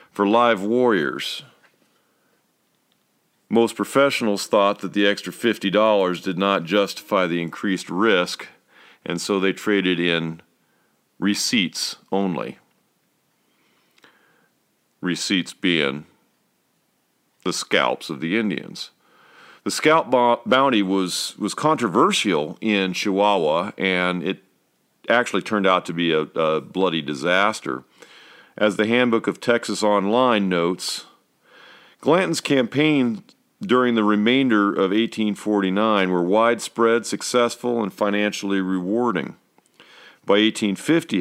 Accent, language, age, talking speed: American, English, 50-69, 105 wpm